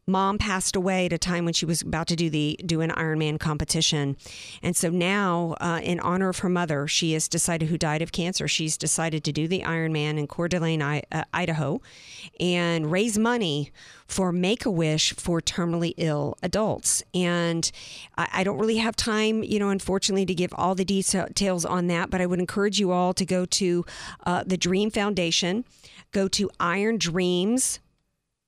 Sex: female